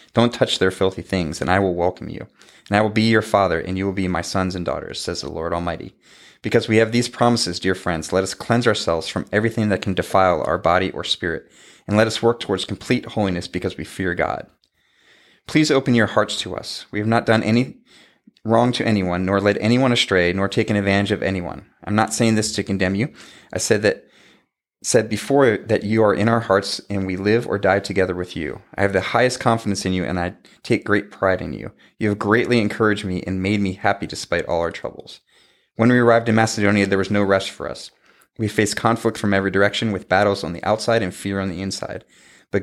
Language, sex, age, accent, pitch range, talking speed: English, male, 30-49, American, 95-115 Hz, 230 wpm